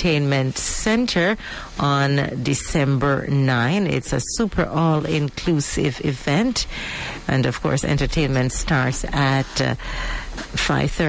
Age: 50-69